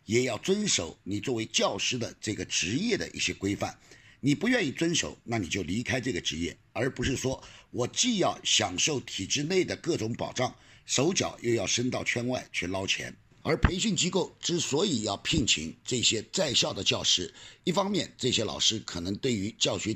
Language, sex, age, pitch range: Chinese, male, 50-69, 100-130 Hz